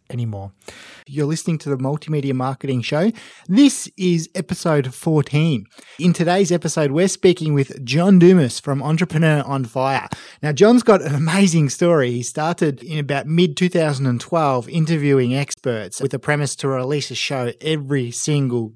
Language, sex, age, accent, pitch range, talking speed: English, male, 20-39, Australian, 130-175 Hz, 145 wpm